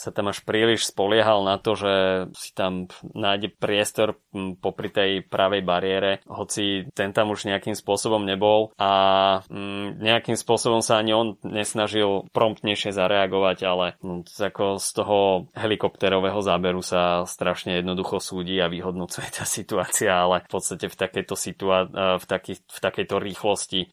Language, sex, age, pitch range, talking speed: Slovak, male, 20-39, 95-105 Hz, 145 wpm